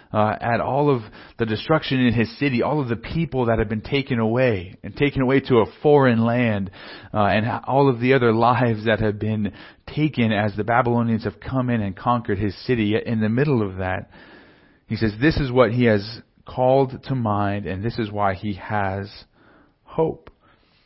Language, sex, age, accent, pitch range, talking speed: English, male, 40-59, American, 105-130 Hz, 200 wpm